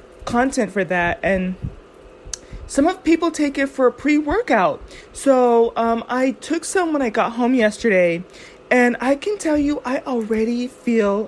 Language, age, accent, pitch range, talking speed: English, 30-49, American, 200-255 Hz, 165 wpm